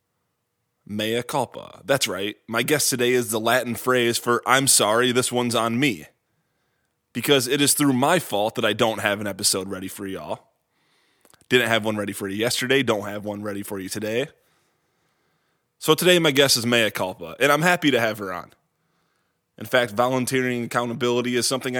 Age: 20-39